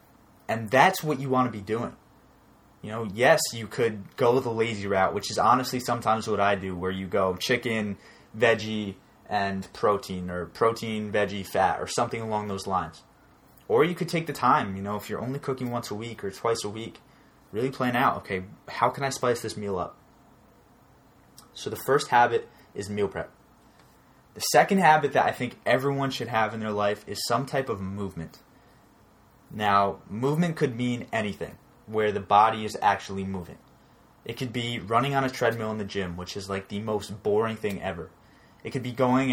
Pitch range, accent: 100-125 Hz, American